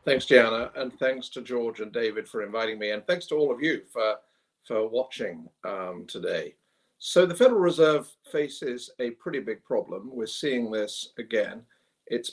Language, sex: English, male